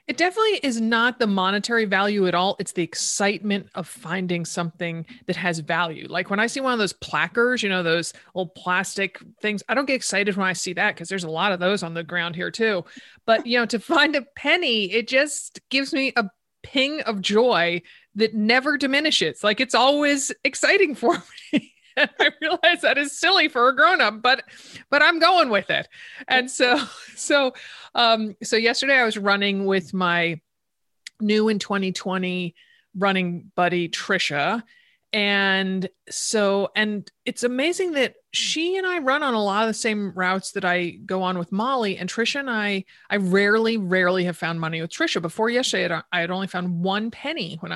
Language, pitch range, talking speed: English, 185-265 Hz, 190 wpm